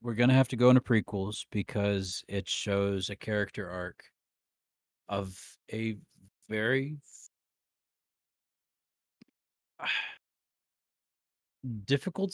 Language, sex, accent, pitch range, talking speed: English, male, American, 100-135 Hz, 85 wpm